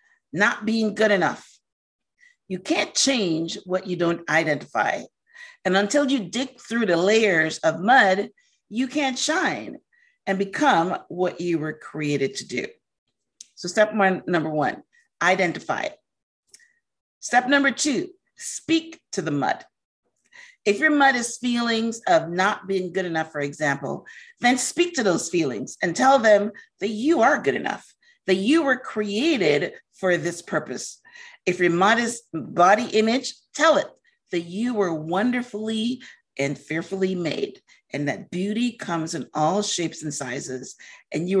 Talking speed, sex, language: 145 wpm, female, English